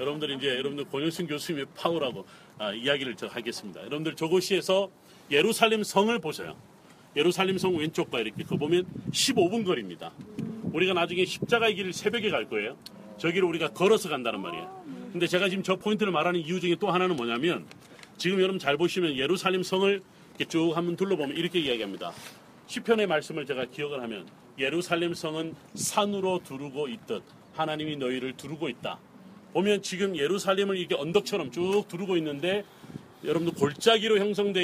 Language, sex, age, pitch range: Korean, male, 40-59, 160-200 Hz